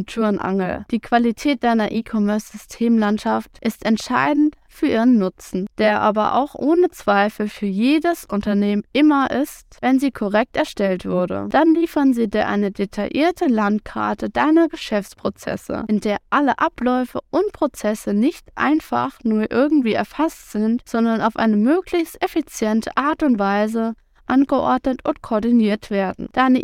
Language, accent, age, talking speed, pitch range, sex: German, German, 20-39, 130 wpm, 210-280 Hz, female